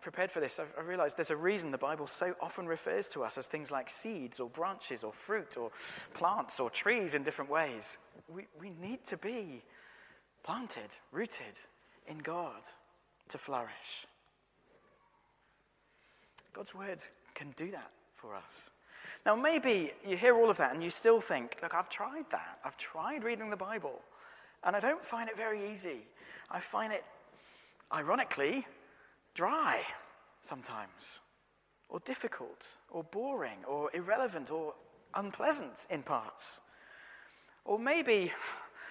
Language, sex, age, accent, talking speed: English, male, 40-59, British, 145 wpm